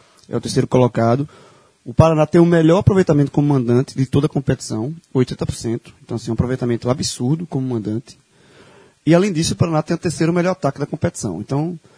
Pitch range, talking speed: 120-150 Hz, 185 wpm